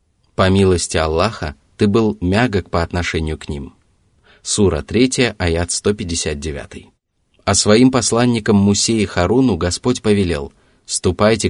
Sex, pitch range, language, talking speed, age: male, 85-105 Hz, Russian, 115 wpm, 30-49